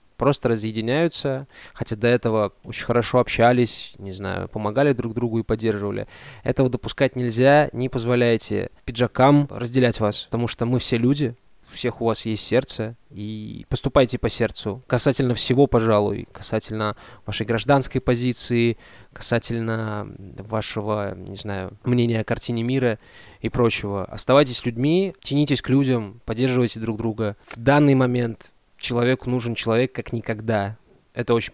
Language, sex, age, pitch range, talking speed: Russian, male, 20-39, 110-130 Hz, 140 wpm